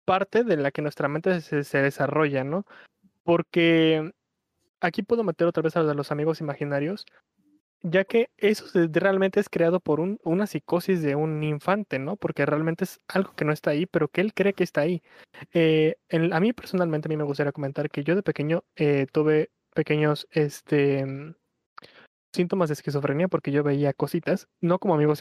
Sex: male